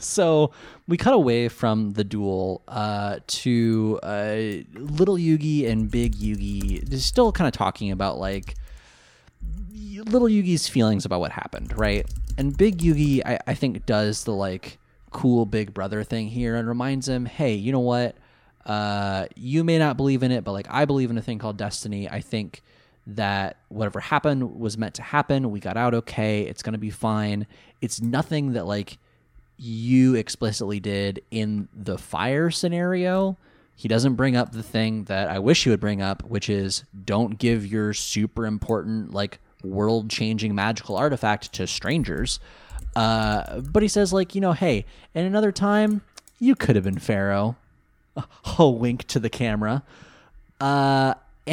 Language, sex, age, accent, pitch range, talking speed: English, male, 20-39, American, 105-140 Hz, 170 wpm